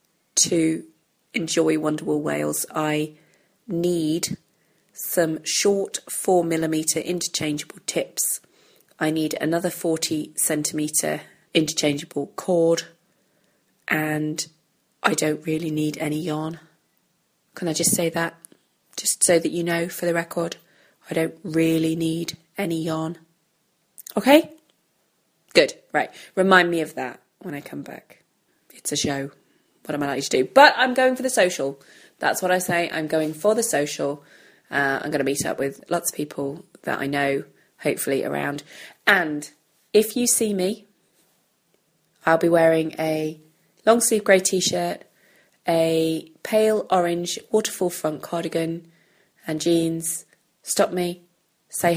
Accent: British